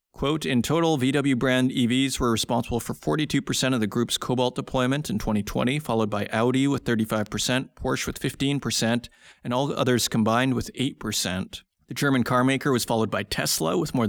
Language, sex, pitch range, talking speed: English, male, 110-140 Hz, 170 wpm